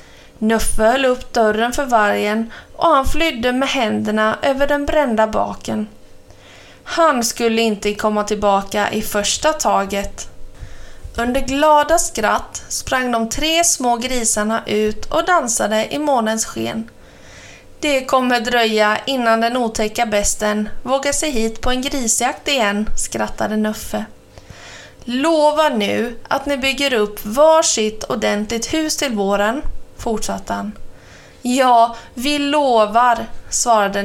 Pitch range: 205-275 Hz